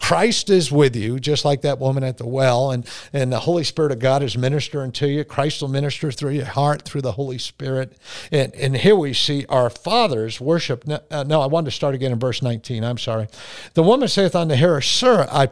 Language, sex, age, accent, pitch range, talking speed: English, male, 50-69, American, 120-150 Hz, 230 wpm